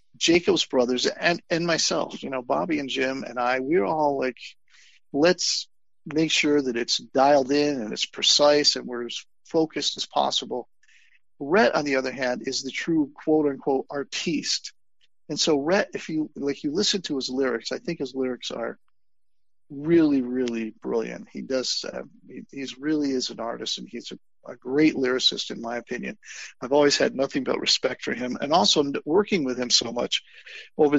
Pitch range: 125-150 Hz